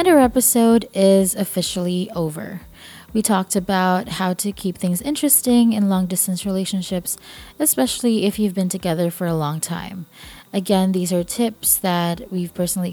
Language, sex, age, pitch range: English, female, 20-39, 175-225 Hz